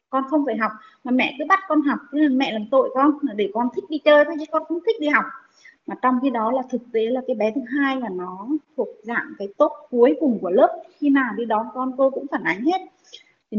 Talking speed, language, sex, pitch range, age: 260 wpm, Vietnamese, female, 225-285 Hz, 20-39